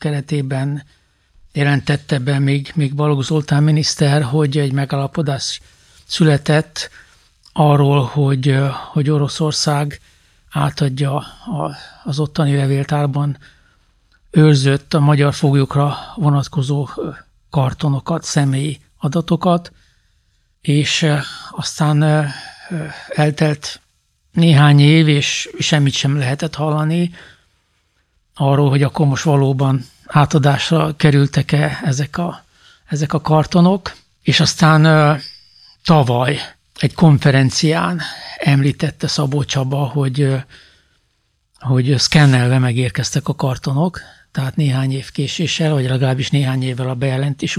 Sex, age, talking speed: male, 60-79, 95 wpm